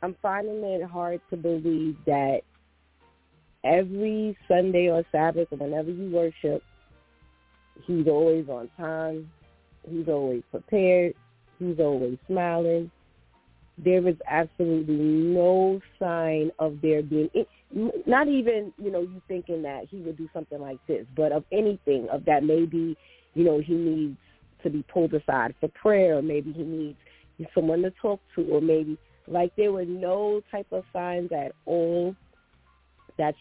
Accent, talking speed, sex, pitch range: American, 145 wpm, female, 155-190 Hz